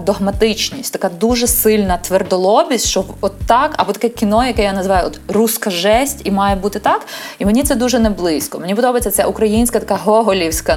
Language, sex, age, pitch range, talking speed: Ukrainian, female, 20-39, 210-275 Hz, 190 wpm